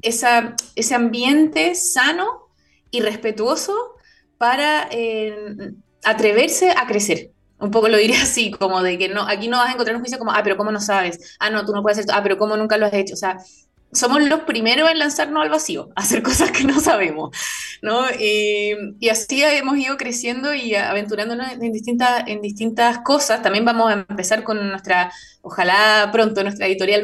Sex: female